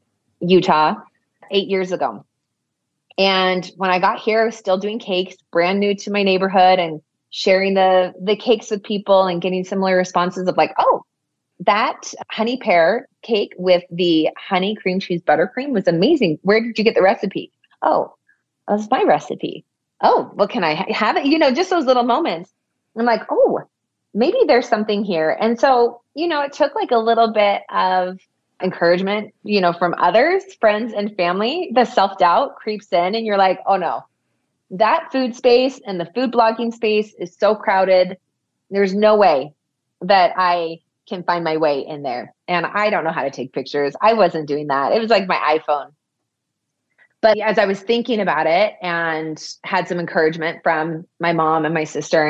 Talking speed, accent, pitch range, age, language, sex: 180 wpm, American, 170-220 Hz, 30-49, English, female